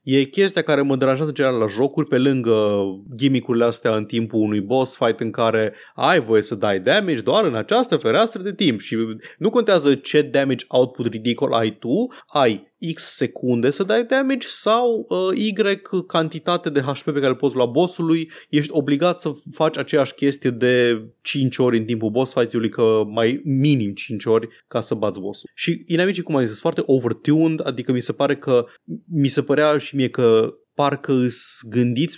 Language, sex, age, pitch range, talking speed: Romanian, male, 20-39, 115-155 Hz, 185 wpm